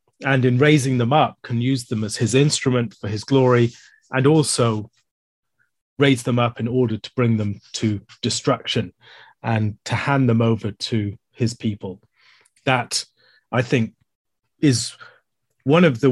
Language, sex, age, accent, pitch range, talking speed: English, male, 30-49, British, 110-130 Hz, 155 wpm